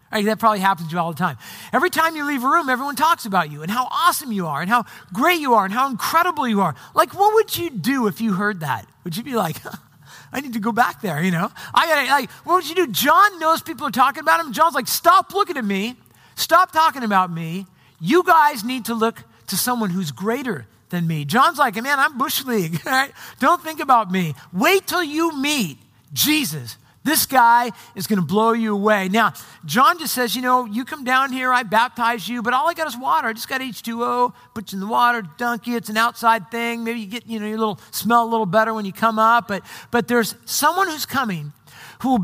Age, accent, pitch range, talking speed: 50-69, American, 195-270 Hz, 240 wpm